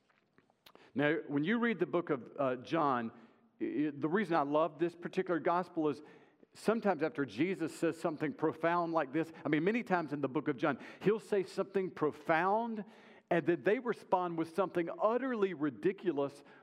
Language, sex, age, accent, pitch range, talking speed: English, male, 50-69, American, 150-200 Hz, 165 wpm